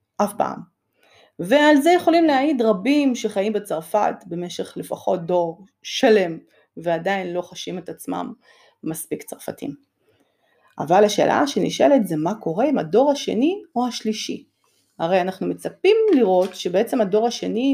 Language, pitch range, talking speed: Hebrew, 180-265 Hz, 130 wpm